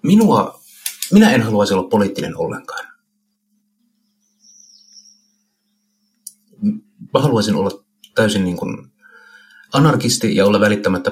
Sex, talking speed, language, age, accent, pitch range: male, 85 wpm, Finnish, 50-69, native, 180-230 Hz